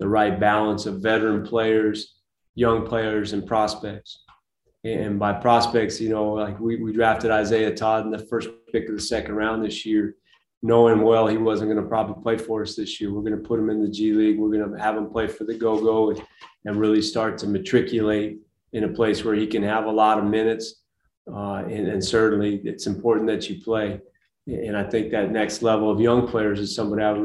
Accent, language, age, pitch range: American, Japanese, 30-49, 105-110 Hz